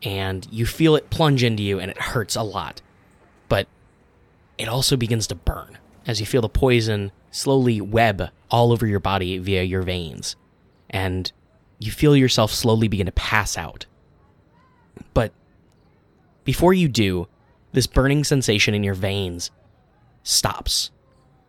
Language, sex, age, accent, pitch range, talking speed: English, male, 10-29, American, 90-125 Hz, 145 wpm